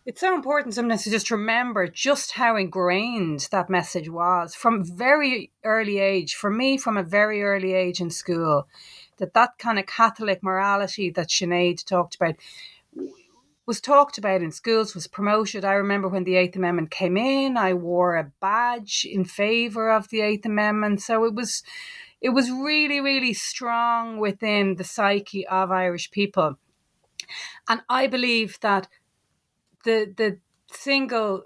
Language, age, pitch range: English, 30-49, 185-230 Hz